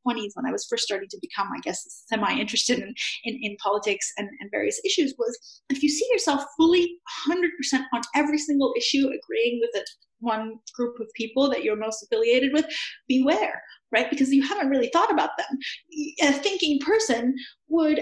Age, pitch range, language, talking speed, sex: 30-49, 235-330 Hz, English, 185 wpm, female